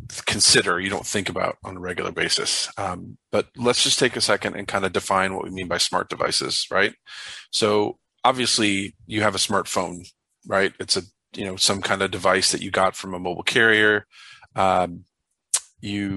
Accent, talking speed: American, 190 wpm